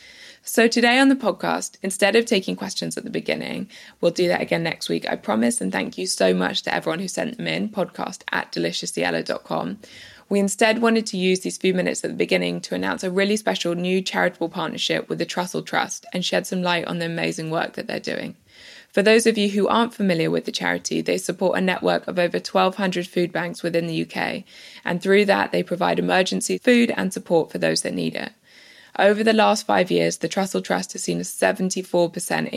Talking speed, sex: 210 wpm, female